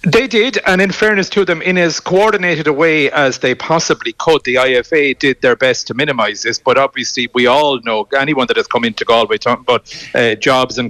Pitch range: 115-135 Hz